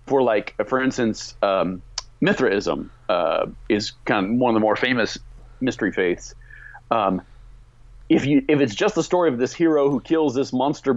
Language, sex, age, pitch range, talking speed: English, male, 40-59, 120-155 Hz, 175 wpm